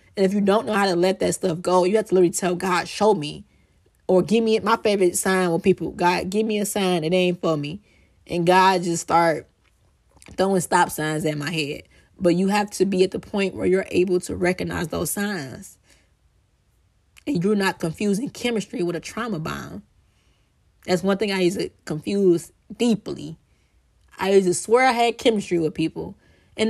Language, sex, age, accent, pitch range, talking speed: English, female, 20-39, American, 165-210 Hz, 200 wpm